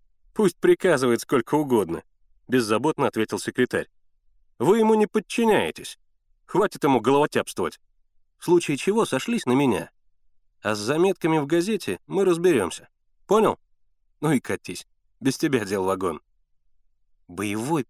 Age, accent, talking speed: 30-49, native, 120 wpm